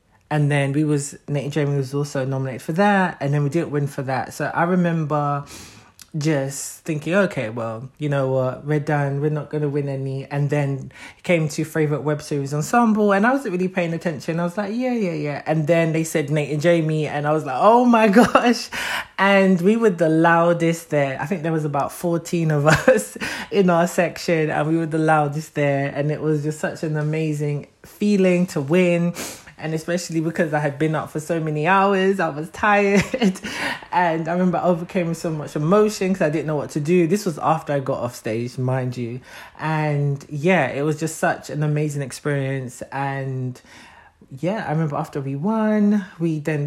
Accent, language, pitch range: British, English, 145-175 Hz